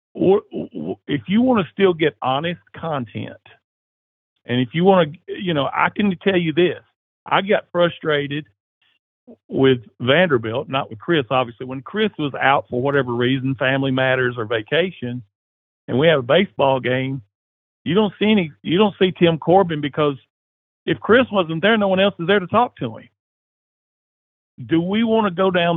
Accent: American